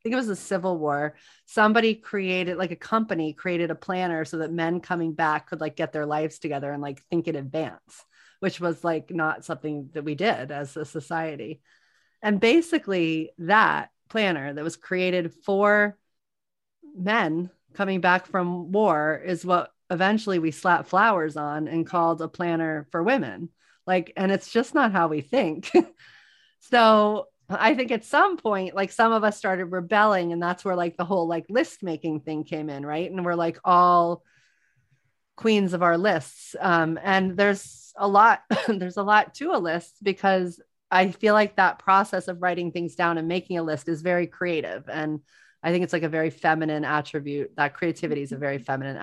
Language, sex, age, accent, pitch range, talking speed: English, female, 30-49, American, 160-195 Hz, 185 wpm